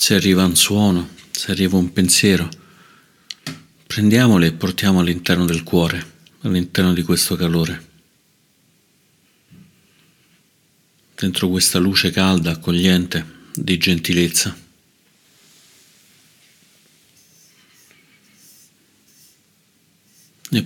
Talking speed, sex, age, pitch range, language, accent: 75 wpm, male, 50-69, 90-100 Hz, Italian, native